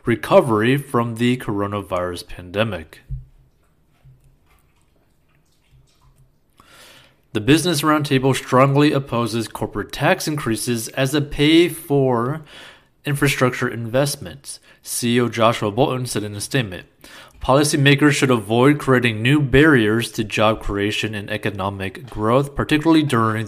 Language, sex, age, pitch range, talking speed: English, male, 30-49, 110-140 Hz, 100 wpm